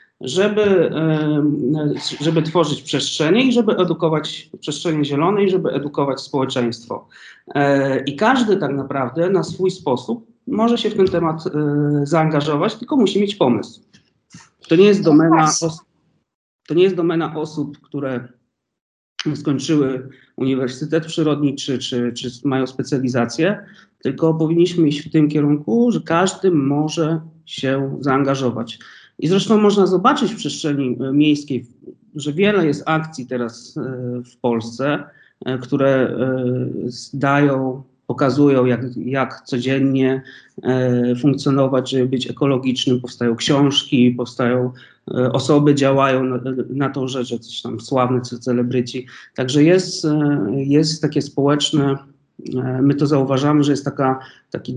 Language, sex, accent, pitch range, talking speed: Polish, male, native, 130-160 Hz, 120 wpm